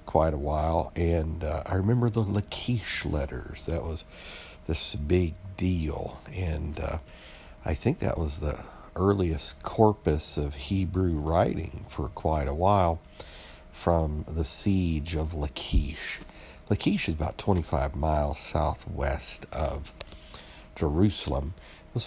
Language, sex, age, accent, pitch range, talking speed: English, male, 60-79, American, 75-90 Hz, 120 wpm